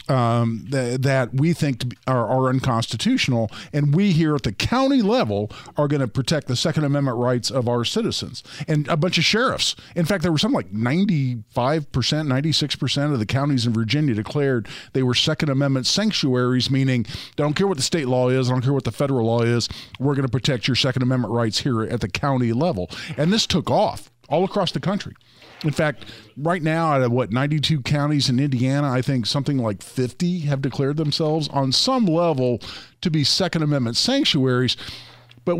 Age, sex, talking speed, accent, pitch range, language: 50-69, male, 195 wpm, American, 125-150 Hz, English